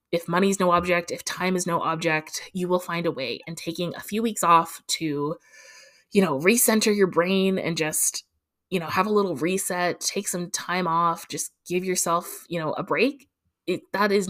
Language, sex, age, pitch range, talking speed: English, female, 20-39, 150-180 Hz, 200 wpm